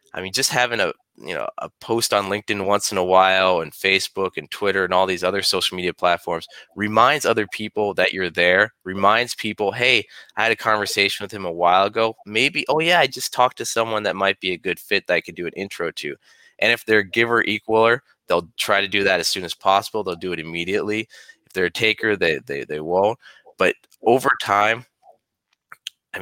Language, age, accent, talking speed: English, 20-39, American, 215 wpm